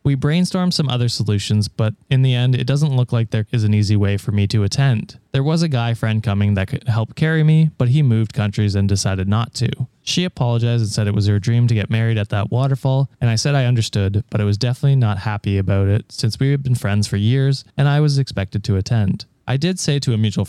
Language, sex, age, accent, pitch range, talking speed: English, male, 20-39, American, 105-130 Hz, 255 wpm